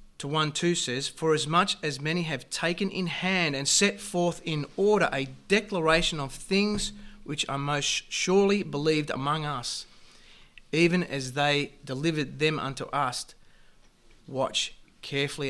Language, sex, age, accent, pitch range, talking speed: English, male, 30-49, Australian, 135-165 Hz, 145 wpm